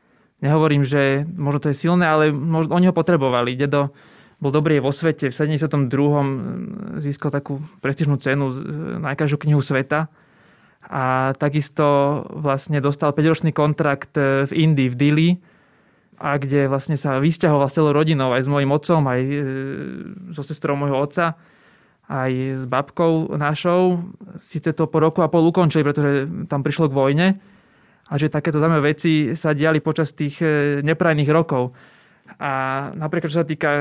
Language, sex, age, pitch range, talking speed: Slovak, male, 20-39, 140-160 Hz, 150 wpm